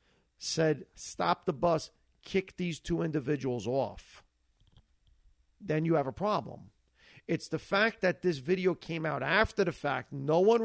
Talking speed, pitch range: 150 wpm, 115-175 Hz